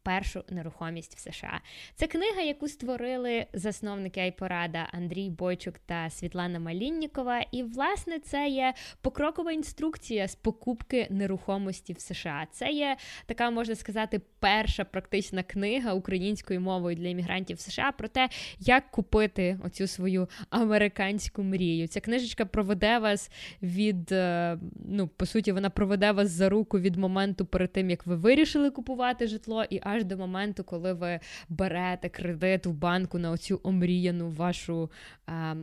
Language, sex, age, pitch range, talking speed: Ukrainian, female, 20-39, 180-220 Hz, 140 wpm